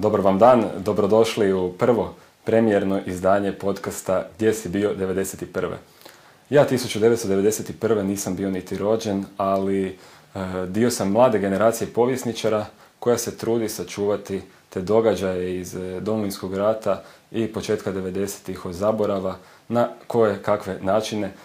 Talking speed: 120 wpm